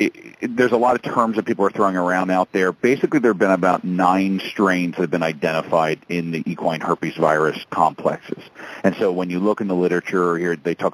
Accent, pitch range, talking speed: American, 85-100 Hz, 230 wpm